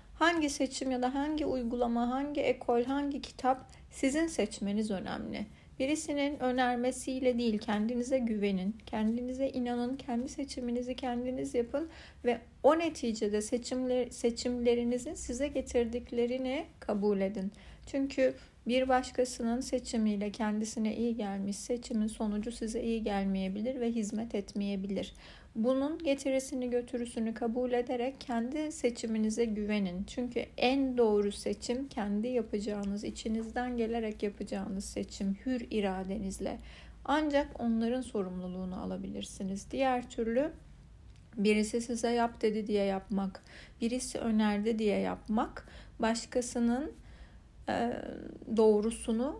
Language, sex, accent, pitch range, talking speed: Turkish, female, native, 205-250 Hz, 105 wpm